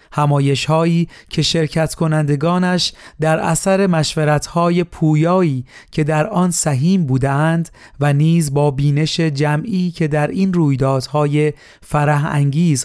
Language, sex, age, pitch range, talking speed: Persian, male, 30-49, 140-160 Hz, 110 wpm